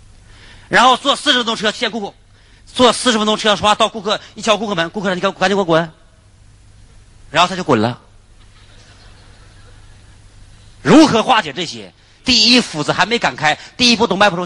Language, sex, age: Chinese, male, 40-59